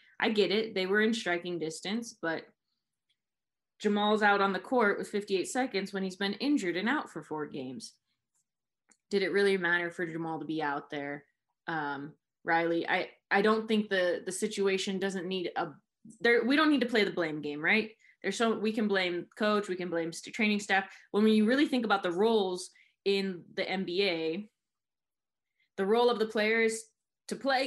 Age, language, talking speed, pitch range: 20-39, English, 190 wpm, 175-225 Hz